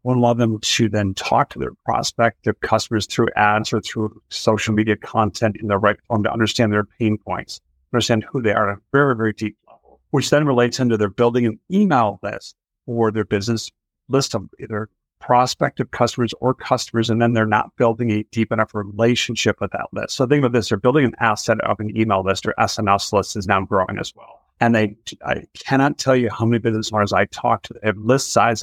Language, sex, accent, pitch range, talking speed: English, male, American, 110-130 Hz, 220 wpm